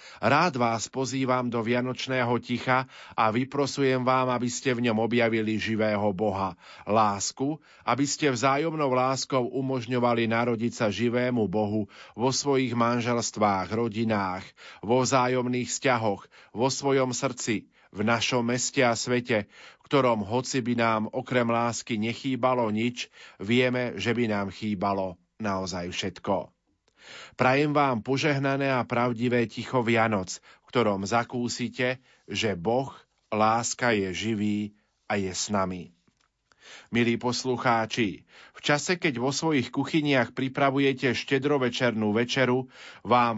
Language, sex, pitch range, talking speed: Slovak, male, 110-130 Hz, 120 wpm